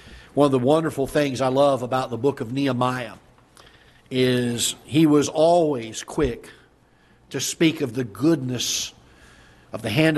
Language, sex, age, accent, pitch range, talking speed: English, male, 50-69, American, 120-140 Hz, 145 wpm